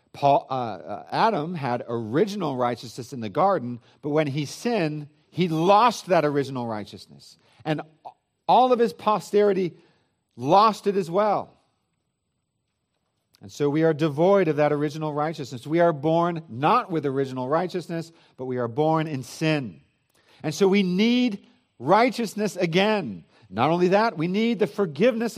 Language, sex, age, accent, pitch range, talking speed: English, male, 50-69, American, 120-175 Hz, 145 wpm